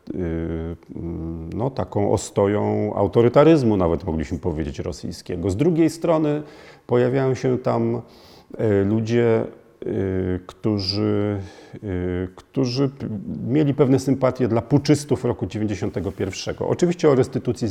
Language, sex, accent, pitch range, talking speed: Polish, male, native, 90-125 Hz, 90 wpm